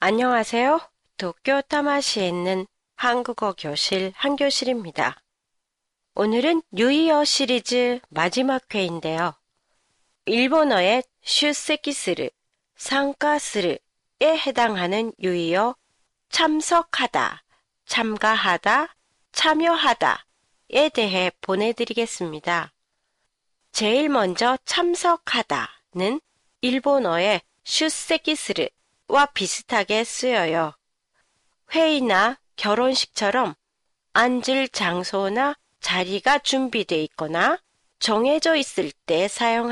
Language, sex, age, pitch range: Japanese, female, 40-59, 205-295 Hz